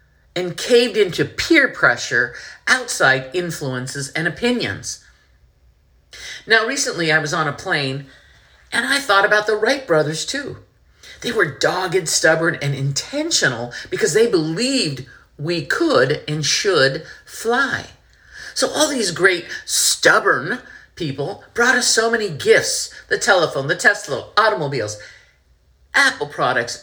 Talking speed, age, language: 125 wpm, 50-69, English